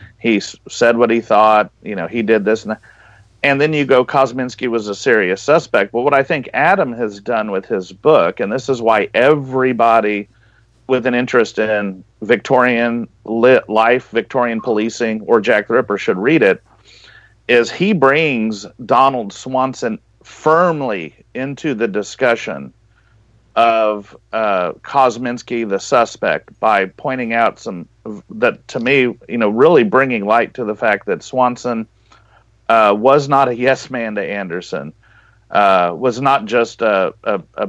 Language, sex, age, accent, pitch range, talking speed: English, male, 40-59, American, 110-130 Hz, 155 wpm